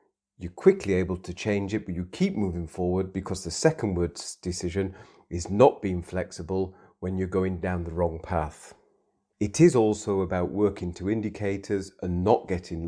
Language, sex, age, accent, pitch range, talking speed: English, male, 40-59, British, 85-105 Hz, 170 wpm